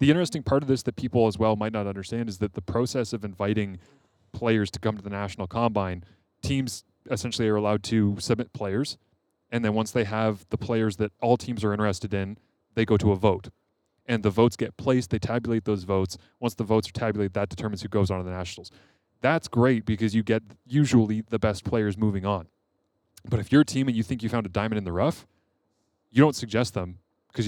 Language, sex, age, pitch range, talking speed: English, male, 20-39, 100-120 Hz, 225 wpm